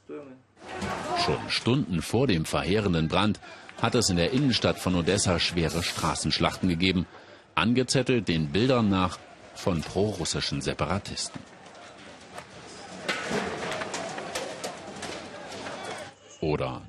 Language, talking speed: German, 85 wpm